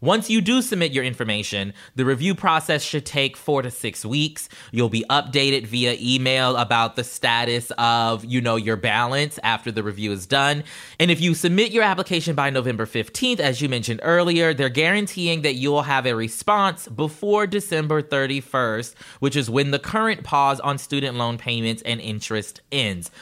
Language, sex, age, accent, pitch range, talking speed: English, male, 20-39, American, 120-160 Hz, 180 wpm